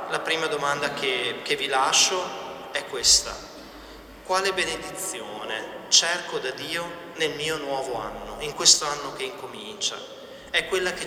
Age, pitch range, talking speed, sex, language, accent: 30-49, 150-195 Hz, 140 wpm, male, Italian, native